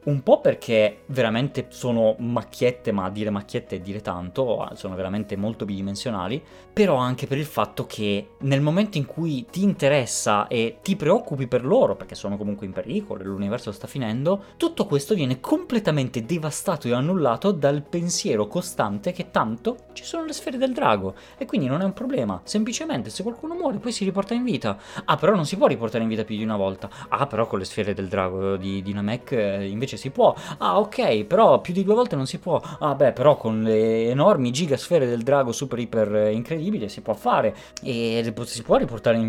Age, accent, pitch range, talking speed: 20-39, native, 110-180 Hz, 200 wpm